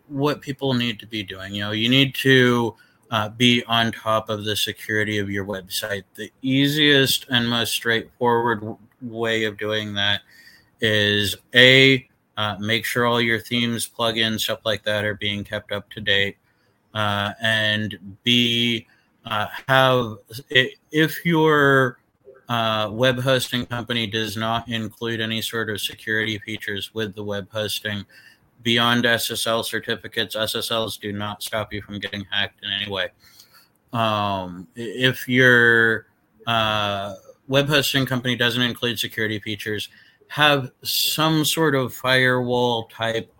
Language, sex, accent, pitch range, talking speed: English, male, American, 105-120 Hz, 145 wpm